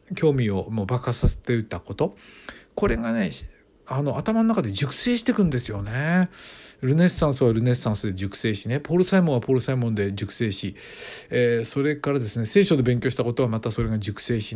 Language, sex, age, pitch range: Japanese, male, 50-69, 110-175 Hz